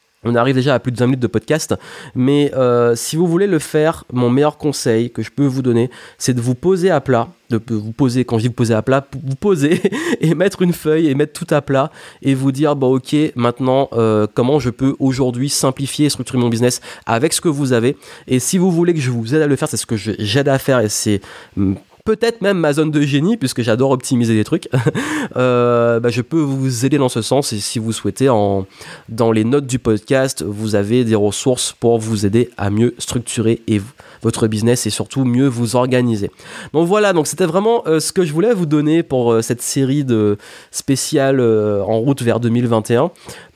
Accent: French